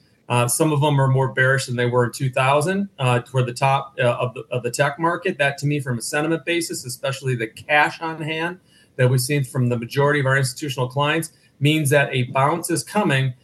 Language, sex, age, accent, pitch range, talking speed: English, male, 40-59, American, 135-160 Hz, 225 wpm